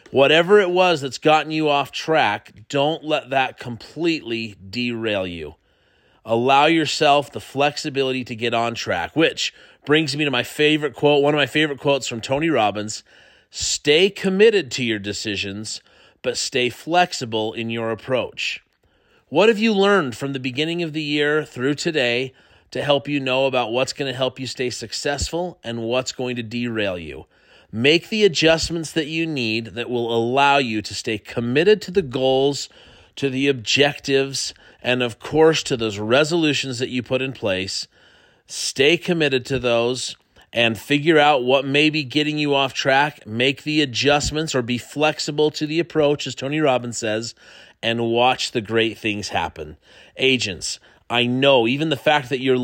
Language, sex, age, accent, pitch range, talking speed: English, male, 30-49, American, 115-150 Hz, 170 wpm